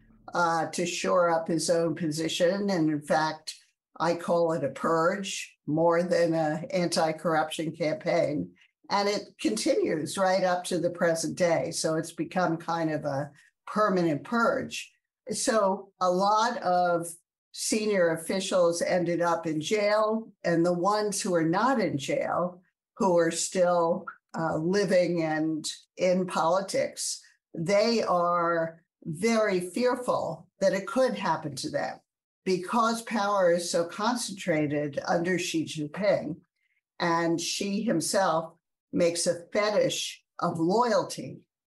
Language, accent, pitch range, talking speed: English, American, 165-200 Hz, 130 wpm